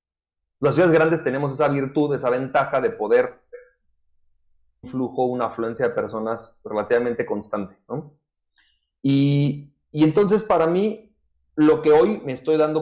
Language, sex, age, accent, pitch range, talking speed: Spanish, male, 30-49, Mexican, 120-155 Hz, 140 wpm